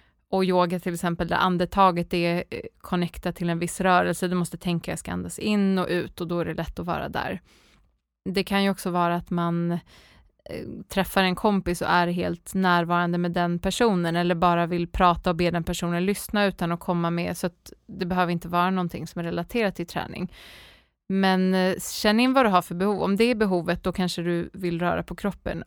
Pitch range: 175-195 Hz